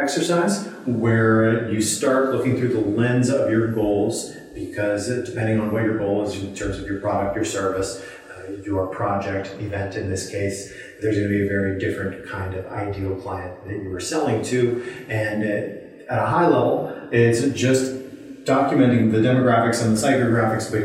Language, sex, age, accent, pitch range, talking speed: English, male, 30-49, American, 105-130 Hz, 175 wpm